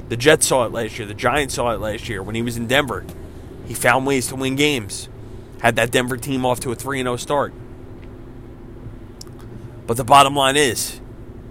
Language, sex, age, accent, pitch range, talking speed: English, male, 30-49, American, 115-130 Hz, 200 wpm